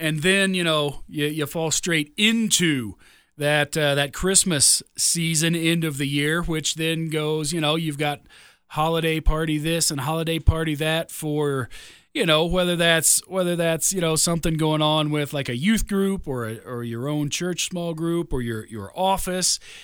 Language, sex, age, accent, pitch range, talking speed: English, male, 40-59, American, 150-210 Hz, 185 wpm